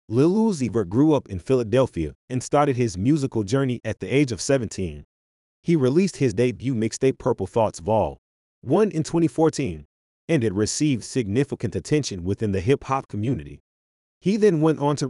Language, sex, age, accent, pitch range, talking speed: English, male, 30-49, American, 100-140 Hz, 165 wpm